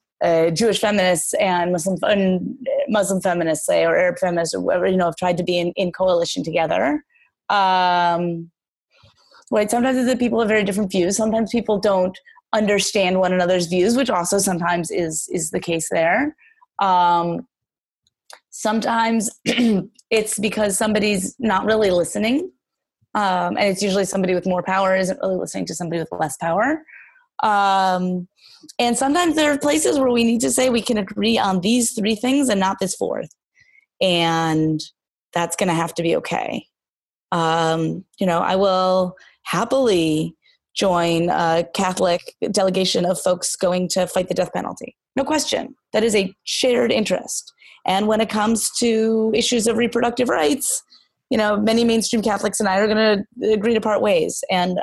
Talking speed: 165 wpm